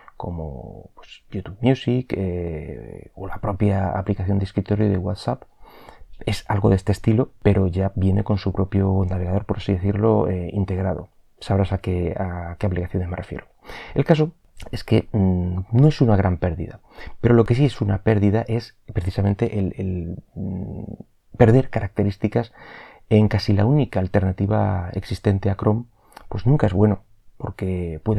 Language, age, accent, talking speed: Spanish, 30-49, Spanish, 160 wpm